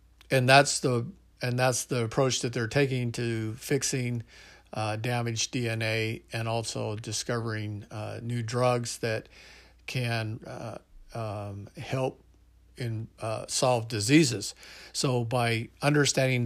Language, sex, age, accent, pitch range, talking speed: English, male, 50-69, American, 110-130 Hz, 120 wpm